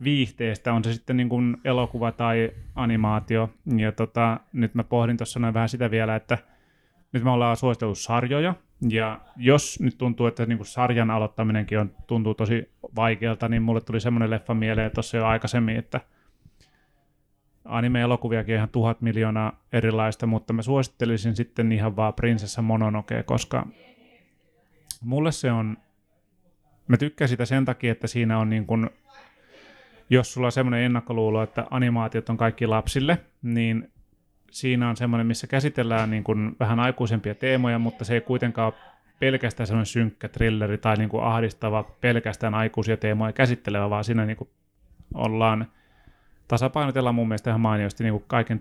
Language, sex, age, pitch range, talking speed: Finnish, male, 30-49, 110-120 Hz, 150 wpm